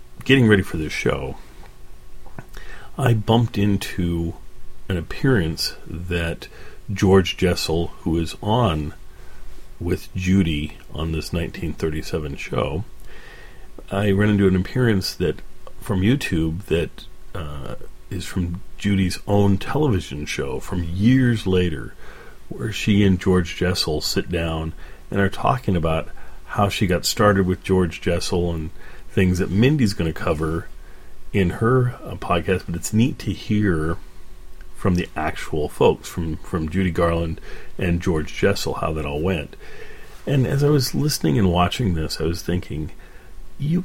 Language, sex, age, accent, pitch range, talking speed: English, male, 40-59, American, 80-105 Hz, 140 wpm